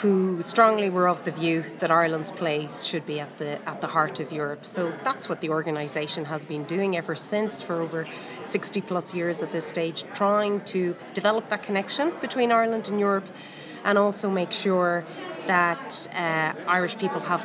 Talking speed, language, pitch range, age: 185 wpm, English, 170-205 Hz, 30-49